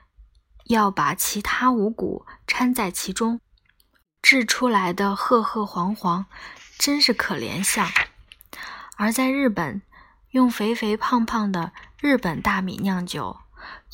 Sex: female